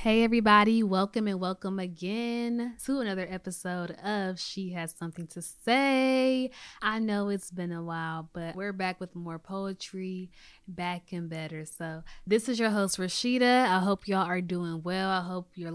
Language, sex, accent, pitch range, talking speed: English, female, American, 170-205 Hz, 170 wpm